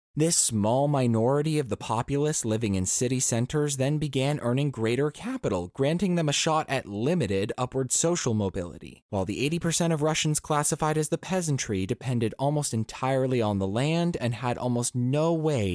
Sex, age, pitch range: male, 20-39, 115-165 Hz